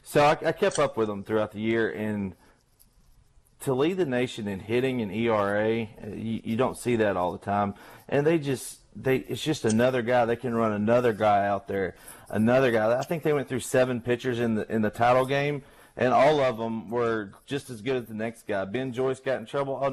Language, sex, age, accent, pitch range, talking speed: English, male, 30-49, American, 110-130 Hz, 230 wpm